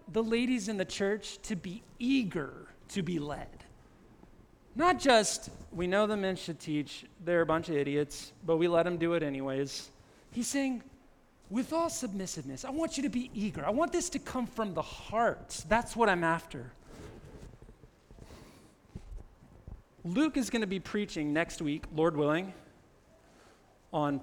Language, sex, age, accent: English, male, 40-59, American